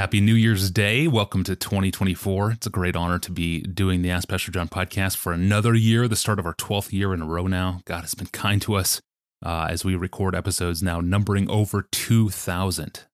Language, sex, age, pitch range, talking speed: English, male, 30-49, 90-110 Hz, 215 wpm